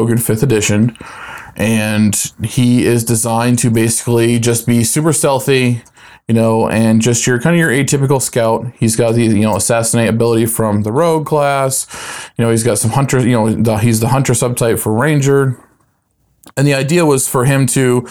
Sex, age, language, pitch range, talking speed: male, 20-39, English, 110-130 Hz, 180 wpm